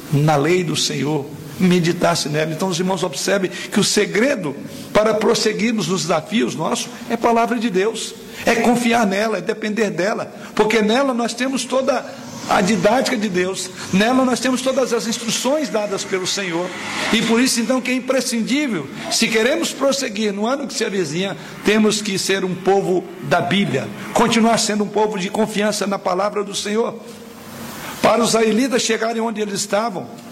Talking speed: 170 wpm